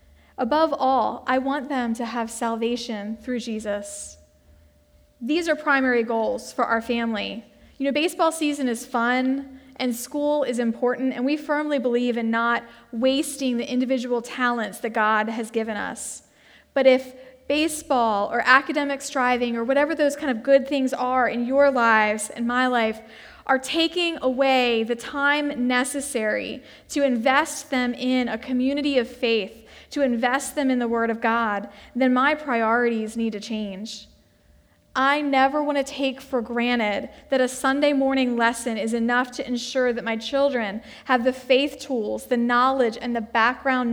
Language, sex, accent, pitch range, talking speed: English, female, American, 230-270 Hz, 160 wpm